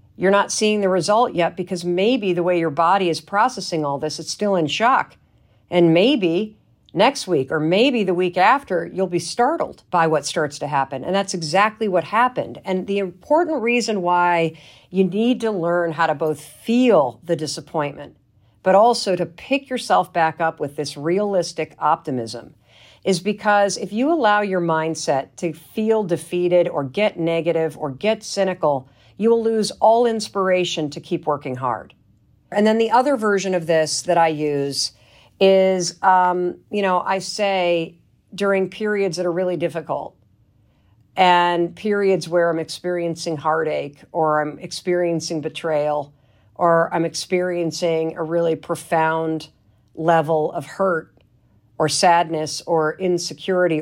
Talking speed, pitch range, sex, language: 155 wpm, 155-195 Hz, female, English